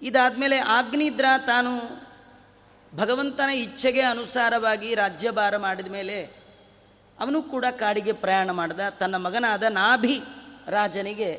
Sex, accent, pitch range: female, native, 205-265 Hz